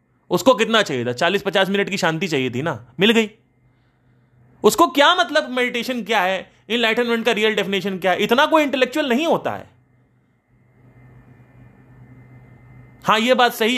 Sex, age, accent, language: male, 30-49, native, Hindi